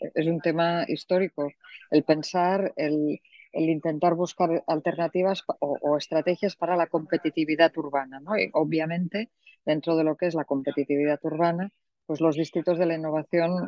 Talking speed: 155 wpm